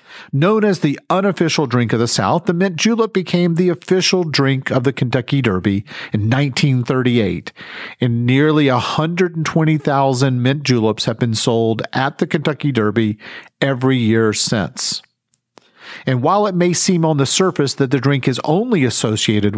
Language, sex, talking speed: English, male, 155 wpm